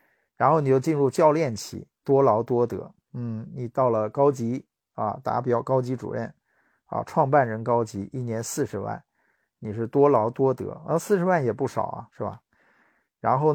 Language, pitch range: Chinese, 115-150 Hz